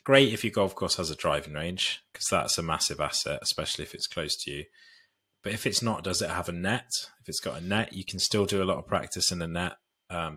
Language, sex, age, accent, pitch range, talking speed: English, male, 30-49, British, 85-105 Hz, 265 wpm